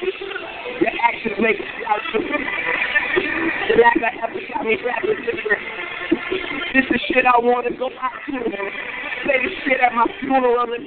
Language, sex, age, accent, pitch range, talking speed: English, male, 50-69, American, 240-340 Hz, 160 wpm